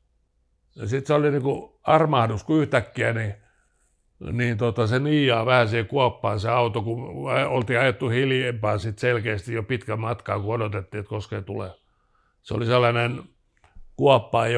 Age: 60-79